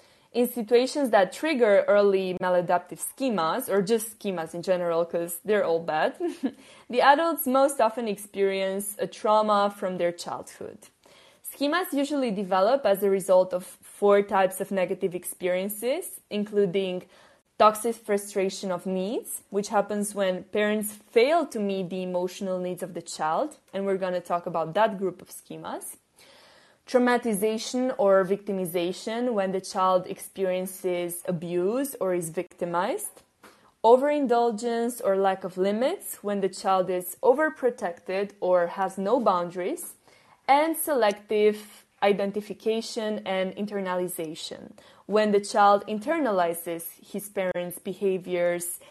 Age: 20-39